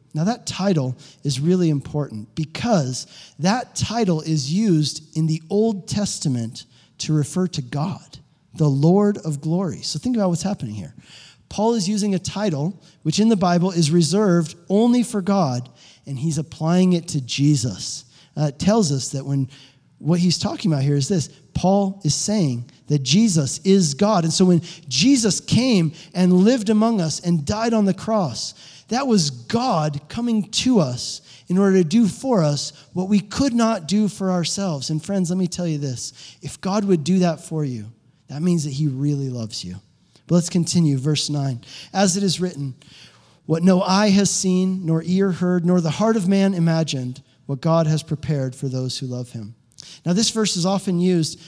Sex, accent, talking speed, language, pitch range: male, American, 190 wpm, English, 145-195 Hz